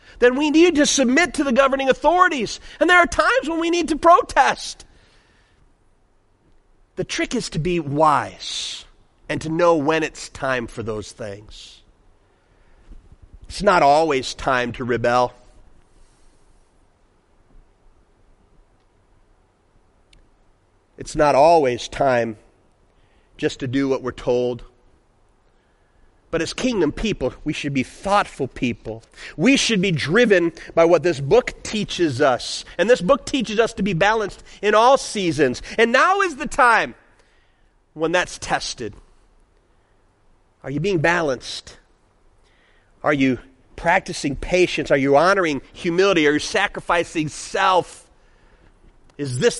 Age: 40-59